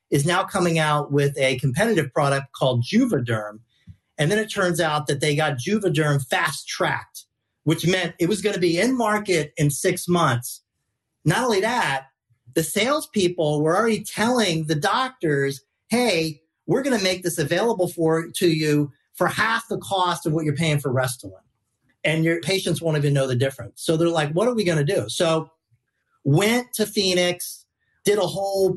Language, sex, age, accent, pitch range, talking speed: English, male, 40-59, American, 140-185 Hz, 180 wpm